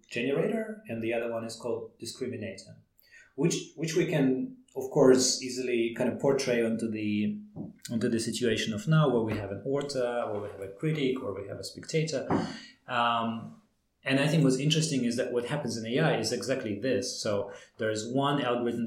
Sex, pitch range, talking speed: male, 110-130 Hz, 190 wpm